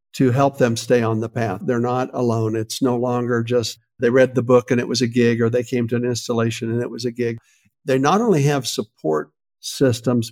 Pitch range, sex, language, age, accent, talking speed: 120-135 Hz, male, English, 60-79, American, 235 wpm